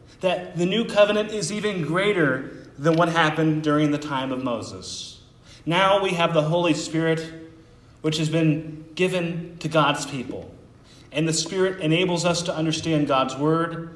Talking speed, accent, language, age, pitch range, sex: 160 wpm, American, English, 30-49, 150-180 Hz, male